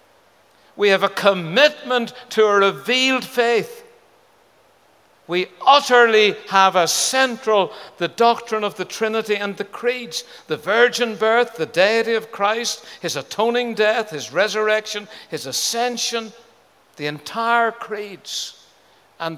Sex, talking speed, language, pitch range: male, 120 wpm, English, 145-215 Hz